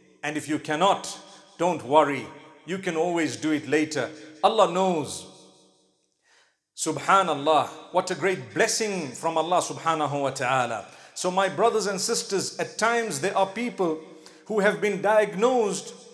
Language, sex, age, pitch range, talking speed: English, male, 50-69, 165-215 Hz, 140 wpm